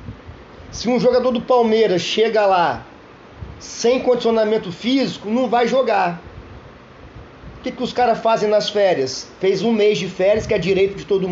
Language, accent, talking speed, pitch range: Portuguese, Brazilian, 165 wpm, 195-235 Hz